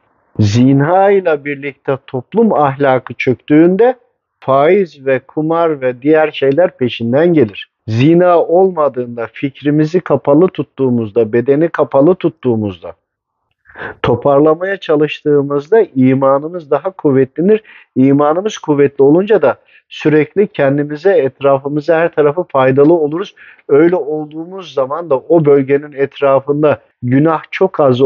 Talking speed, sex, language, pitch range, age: 105 wpm, male, Turkish, 135-160 Hz, 50-69